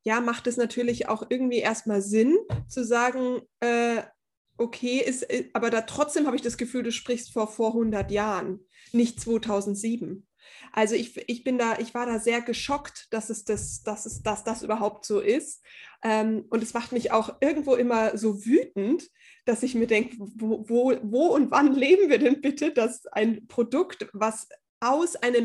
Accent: German